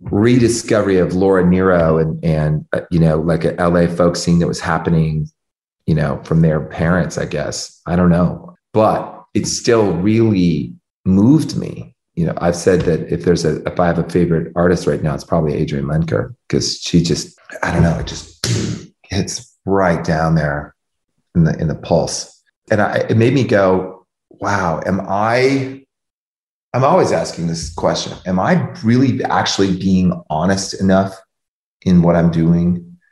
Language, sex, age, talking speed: English, male, 30-49, 170 wpm